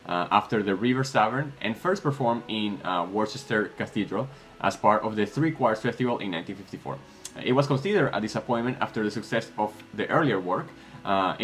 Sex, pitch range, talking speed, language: male, 105-135 Hz, 180 wpm, English